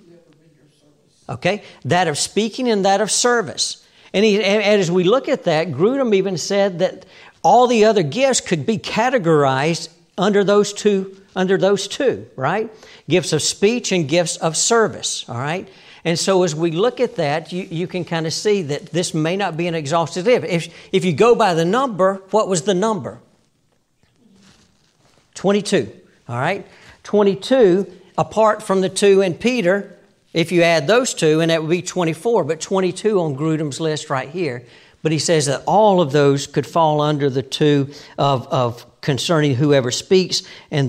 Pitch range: 155-200 Hz